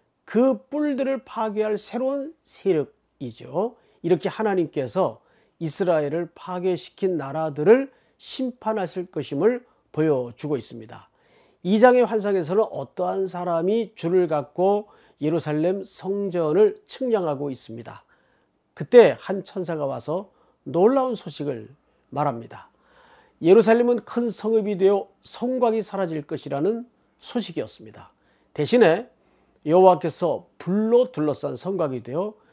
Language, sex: Korean, male